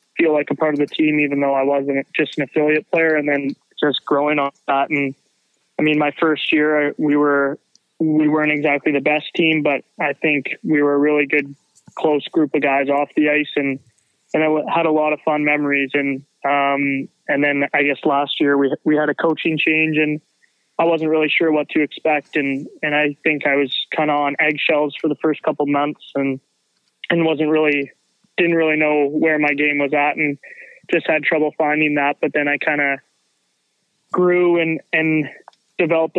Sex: male